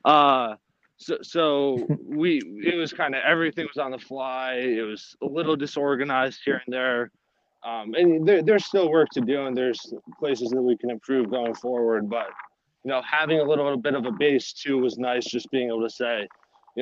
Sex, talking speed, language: male, 205 wpm, English